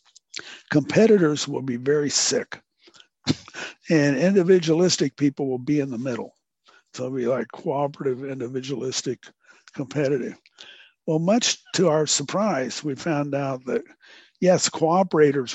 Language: English